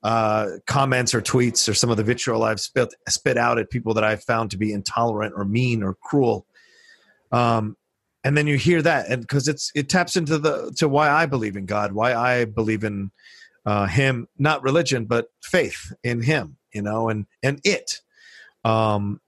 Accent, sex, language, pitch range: American, male, English, 105-135 Hz